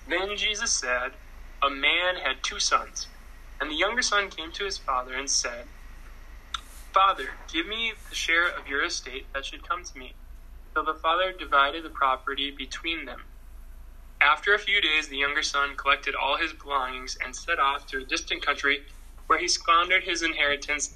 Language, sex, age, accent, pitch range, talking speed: English, male, 10-29, American, 135-175 Hz, 180 wpm